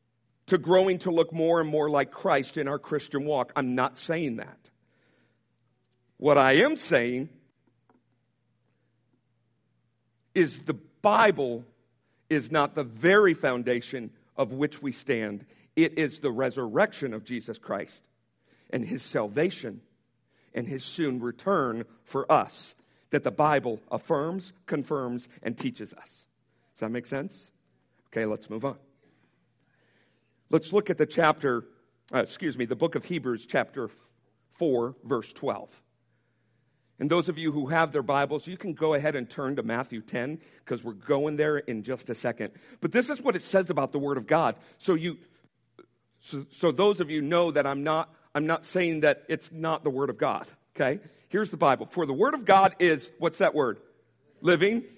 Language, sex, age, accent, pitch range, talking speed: English, male, 50-69, American, 120-165 Hz, 165 wpm